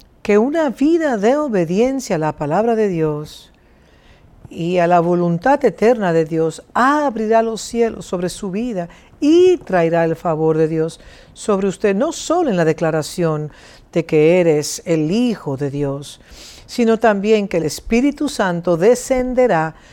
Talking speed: 150 wpm